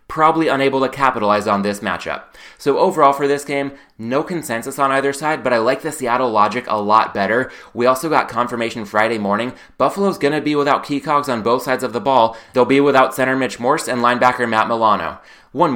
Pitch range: 115-140 Hz